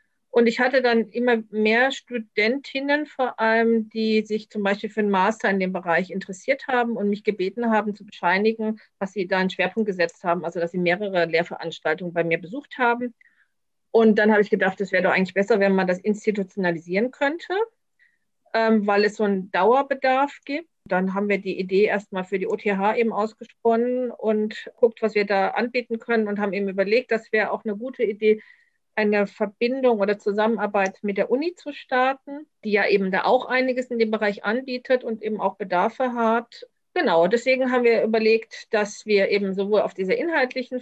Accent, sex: German, female